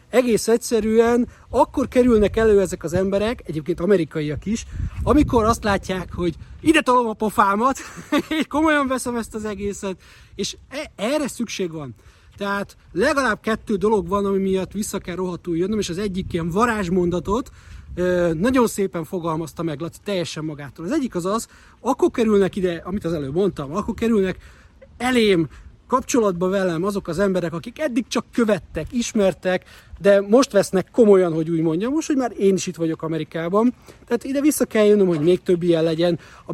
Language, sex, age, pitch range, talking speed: Hungarian, male, 30-49, 170-230 Hz, 165 wpm